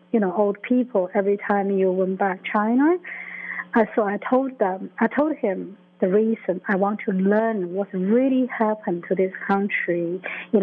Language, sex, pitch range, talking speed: English, female, 195-235 Hz, 165 wpm